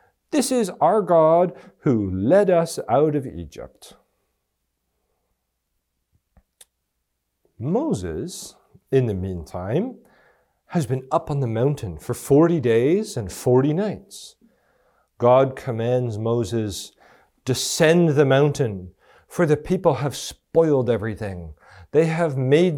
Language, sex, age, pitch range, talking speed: English, male, 40-59, 100-150 Hz, 110 wpm